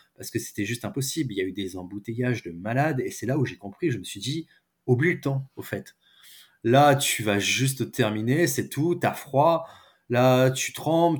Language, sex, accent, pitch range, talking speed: French, male, French, 110-135 Hz, 215 wpm